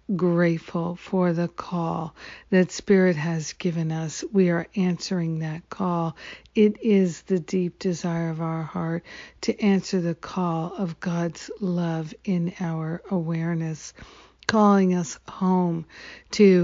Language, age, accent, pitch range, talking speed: English, 60-79, American, 170-190 Hz, 130 wpm